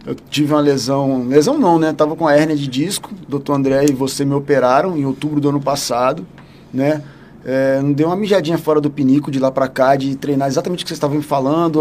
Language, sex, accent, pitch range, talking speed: Portuguese, male, Brazilian, 140-165 Hz, 235 wpm